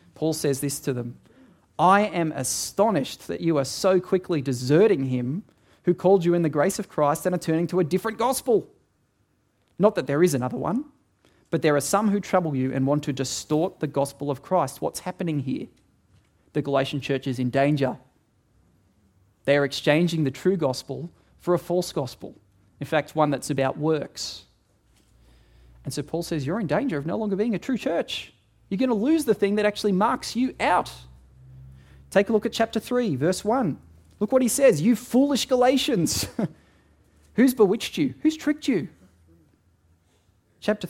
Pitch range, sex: 135-190 Hz, male